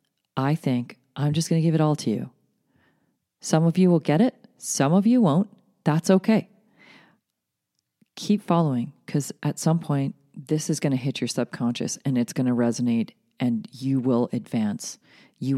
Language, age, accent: English, 40-59, American